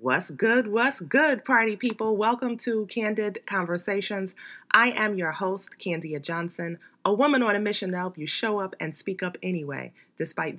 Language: English